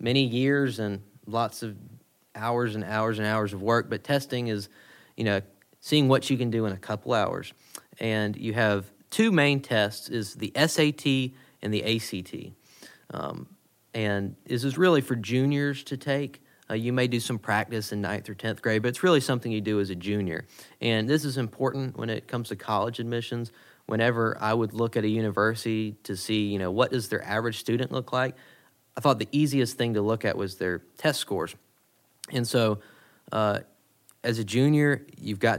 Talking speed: 195 wpm